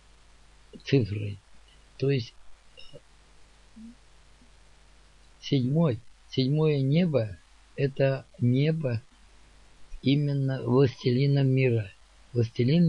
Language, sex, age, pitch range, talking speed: Russian, male, 50-69, 115-135 Hz, 55 wpm